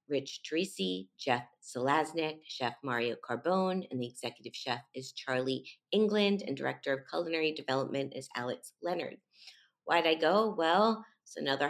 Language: English